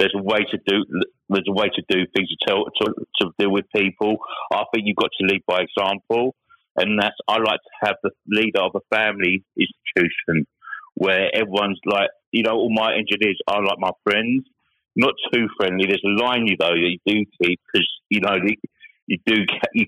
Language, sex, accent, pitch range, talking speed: English, male, British, 100-115 Hz, 195 wpm